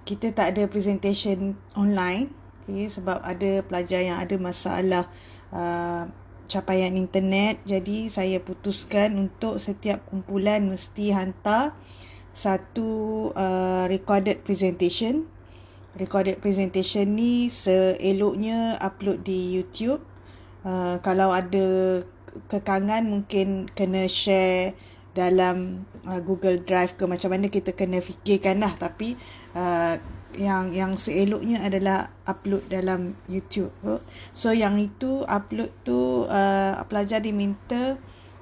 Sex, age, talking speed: female, 20-39, 100 wpm